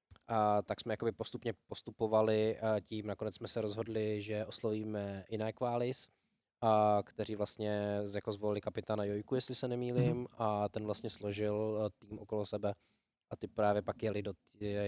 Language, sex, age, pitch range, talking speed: Czech, male, 20-39, 100-110 Hz, 160 wpm